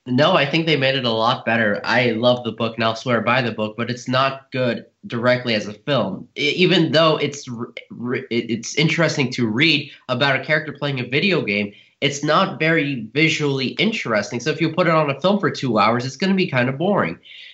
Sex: male